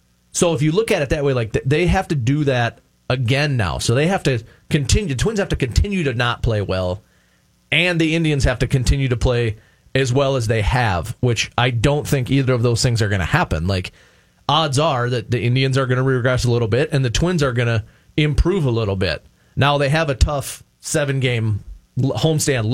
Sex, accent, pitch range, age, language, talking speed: male, American, 110-140 Hz, 30-49, English, 225 wpm